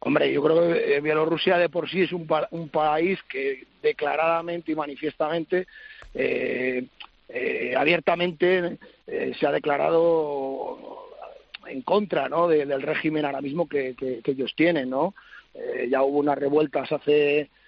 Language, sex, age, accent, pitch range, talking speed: Spanish, male, 40-59, Spanish, 145-175 Hz, 150 wpm